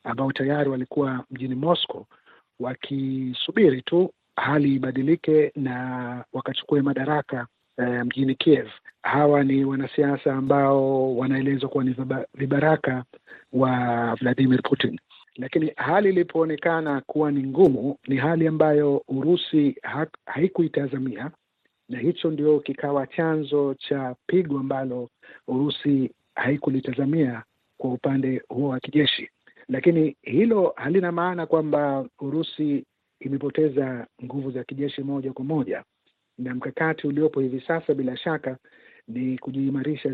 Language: Swahili